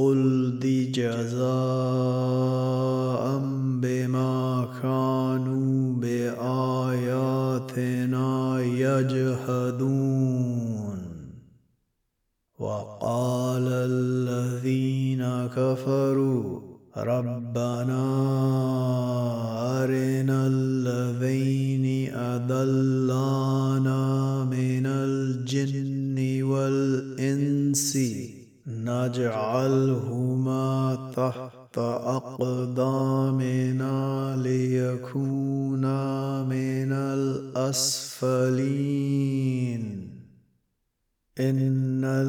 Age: 30-49